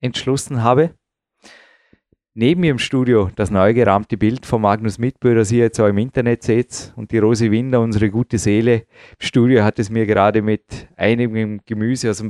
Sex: male